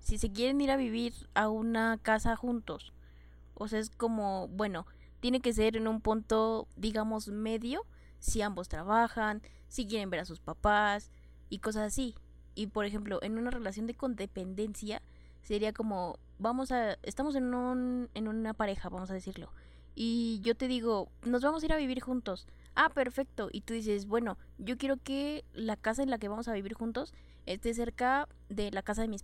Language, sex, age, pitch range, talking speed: Spanish, female, 20-39, 200-240 Hz, 190 wpm